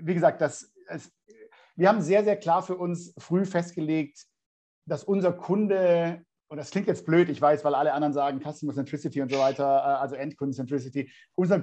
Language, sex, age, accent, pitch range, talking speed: German, male, 50-69, German, 150-190 Hz, 175 wpm